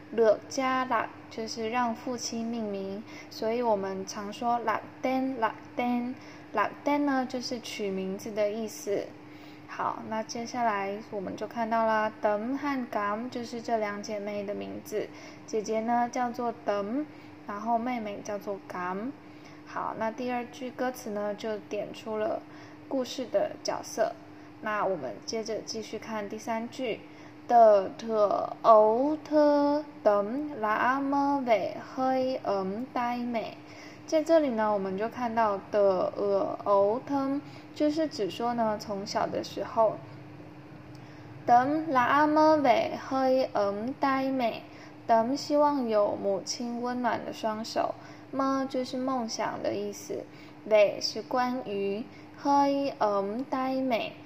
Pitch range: 215-265 Hz